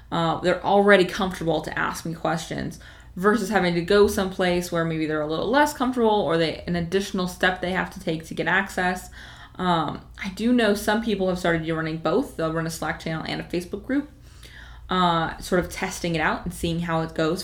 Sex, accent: female, American